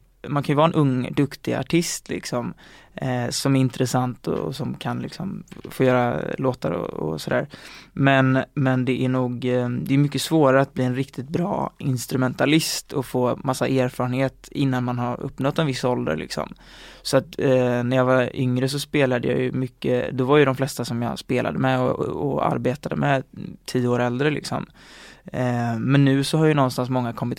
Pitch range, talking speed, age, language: 125-140 Hz, 195 wpm, 20-39, Swedish